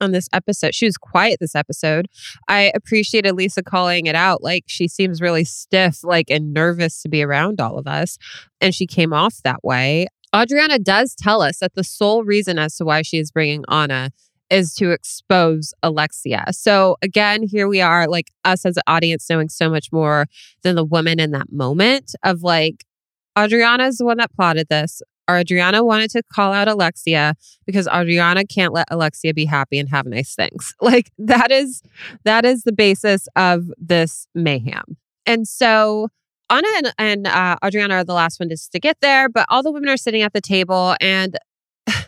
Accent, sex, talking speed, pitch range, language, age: American, female, 190 wpm, 160-215 Hz, English, 20-39